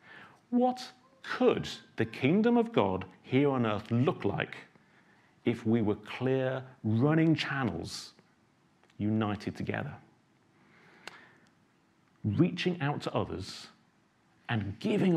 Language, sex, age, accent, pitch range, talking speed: English, male, 40-59, British, 105-145 Hz, 100 wpm